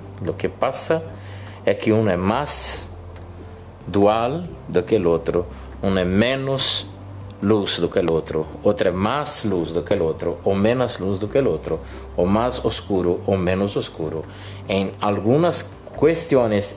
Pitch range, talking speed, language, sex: 85-110 Hz, 160 wpm, Portuguese, male